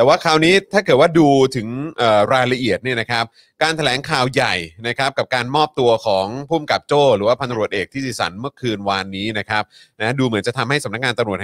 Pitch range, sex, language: 115-150 Hz, male, Thai